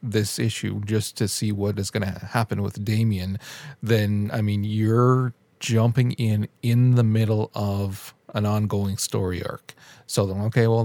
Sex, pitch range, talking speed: male, 105-130 Hz, 165 wpm